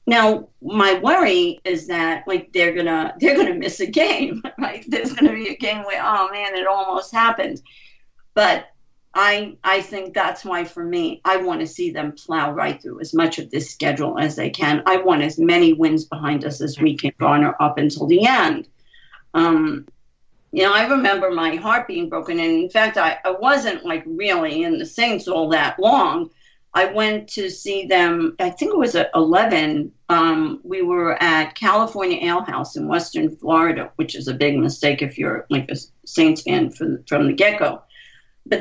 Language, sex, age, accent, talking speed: English, female, 50-69, American, 195 wpm